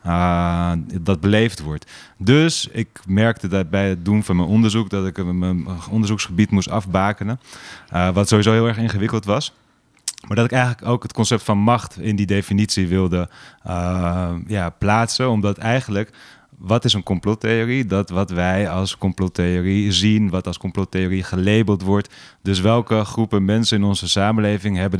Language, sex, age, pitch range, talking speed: Dutch, male, 30-49, 90-110 Hz, 160 wpm